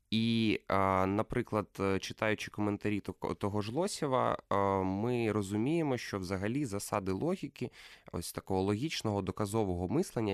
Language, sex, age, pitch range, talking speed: Ukrainian, male, 20-39, 100-150 Hz, 105 wpm